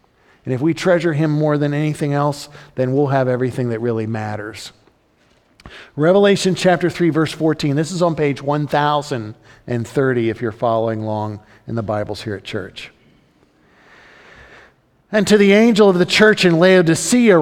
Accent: American